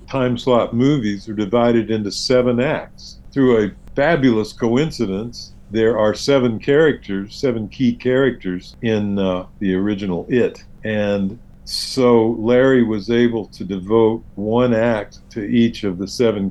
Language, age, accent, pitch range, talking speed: English, 50-69, American, 95-120 Hz, 140 wpm